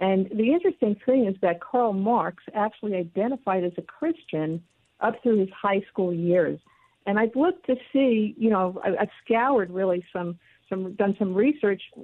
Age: 50-69